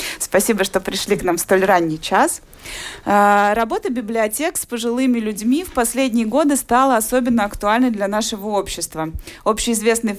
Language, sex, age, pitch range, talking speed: Russian, female, 20-39, 190-245 Hz, 145 wpm